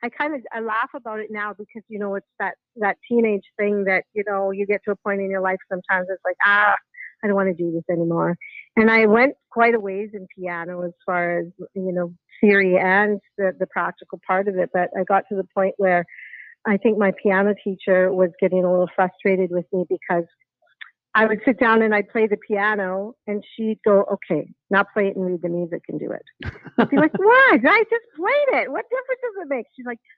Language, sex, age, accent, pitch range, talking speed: English, female, 50-69, American, 185-235 Hz, 235 wpm